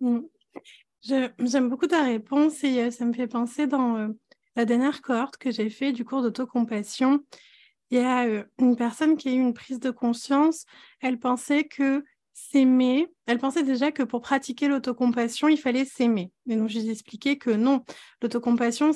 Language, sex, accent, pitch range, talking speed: French, female, French, 230-280 Hz, 180 wpm